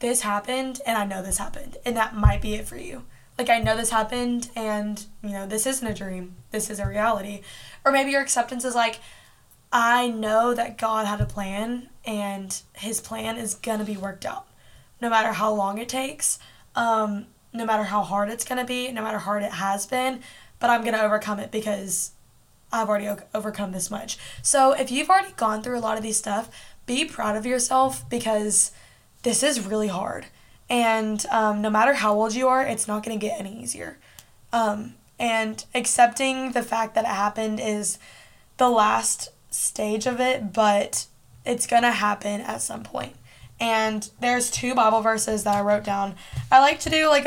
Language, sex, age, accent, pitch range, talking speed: English, female, 10-29, American, 210-245 Hz, 200 wpm